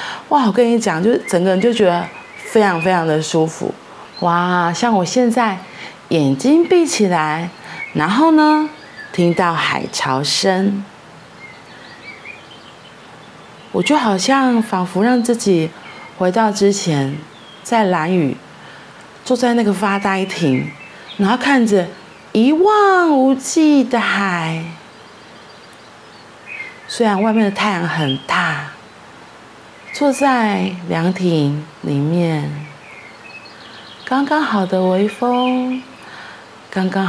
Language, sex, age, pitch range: Chinese, female, 30-49, 175-250 Hz